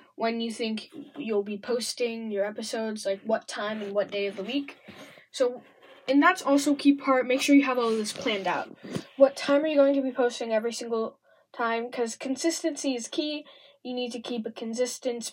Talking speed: 205 wpm